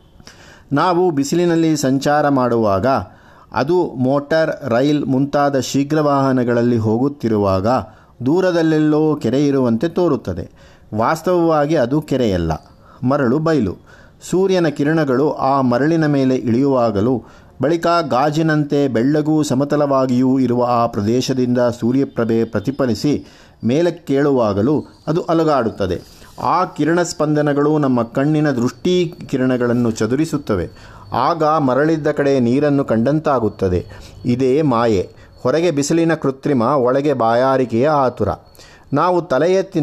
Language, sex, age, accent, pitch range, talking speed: Kannada, male, 50-69, native, 120-155 Hz, 90 wpm